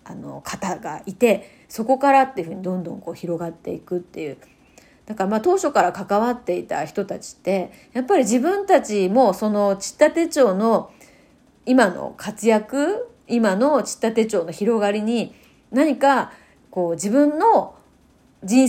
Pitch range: 195-275 Hz